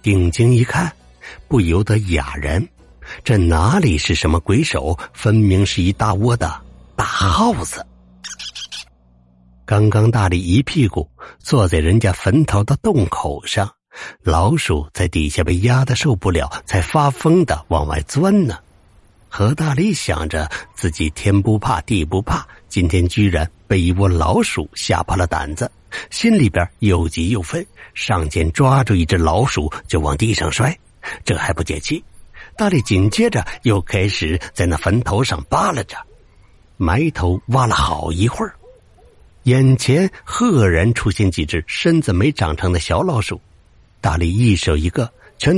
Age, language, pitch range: 60-79, Chinese, 85-120 Hz